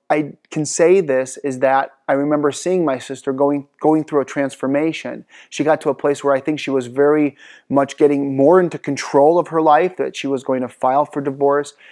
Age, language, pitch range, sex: 30-49, English, 130-145 Hz, male